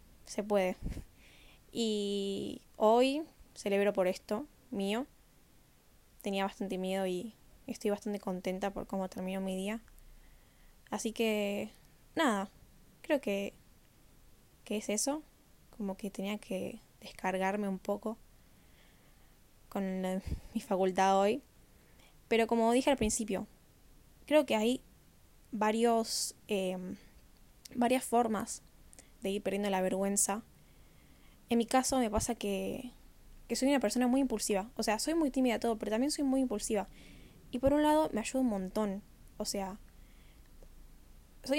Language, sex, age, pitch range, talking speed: Spanish, female, 10-29, 195-240 Hz, 135 wpm